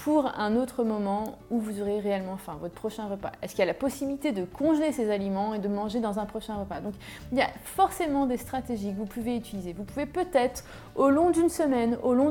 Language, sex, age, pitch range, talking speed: French, female, 30-49, 205-275 Hz, 240 wpm